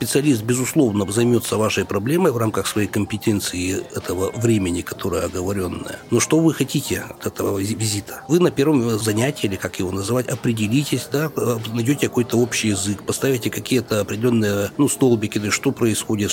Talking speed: 150 wpm